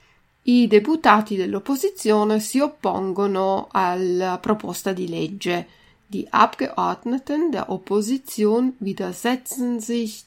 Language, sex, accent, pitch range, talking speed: Italian, female, native, 195-250 Hz, 90 wpm